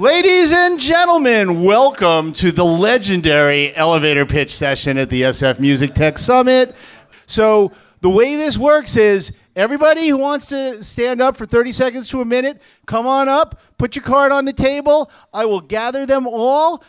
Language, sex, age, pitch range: English, male, 50-69, 175-265 Hz